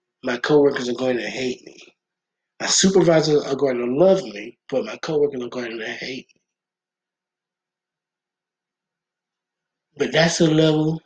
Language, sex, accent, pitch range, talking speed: English, male, American, 130-155 Hz, 140 wpm